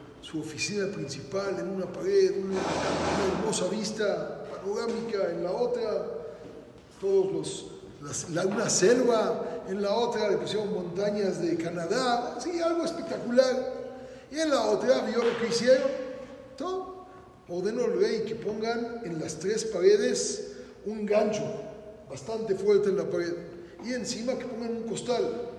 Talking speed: 145 wpm